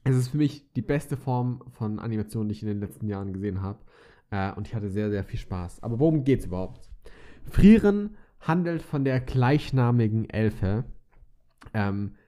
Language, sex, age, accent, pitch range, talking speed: German, male, 20-39, German, 115-140 Hz, 180 wpm